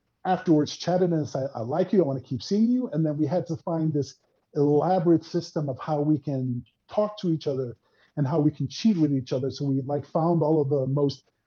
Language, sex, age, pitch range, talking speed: English, male, 50-69, 140-175 Hz, 240 wpm